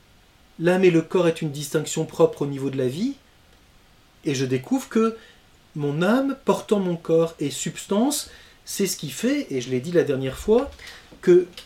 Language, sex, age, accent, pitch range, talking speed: French, male, 40-59, French, 150-205 Hz, 185 wpm